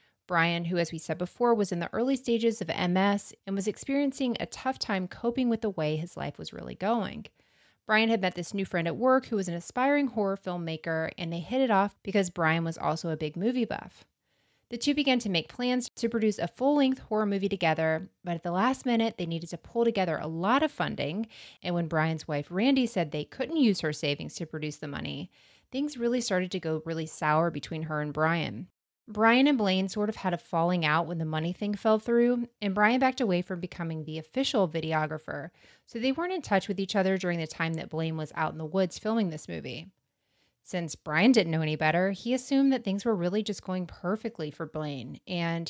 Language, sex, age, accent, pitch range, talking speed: English, female, 30-49, American, 160-225 Hz, 225 wpm